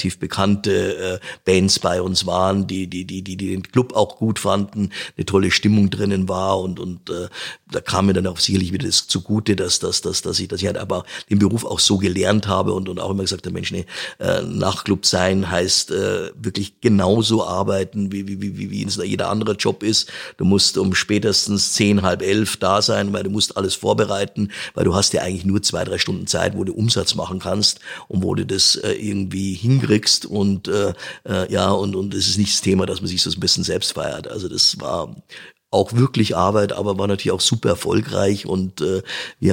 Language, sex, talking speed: German, male, 215 wpm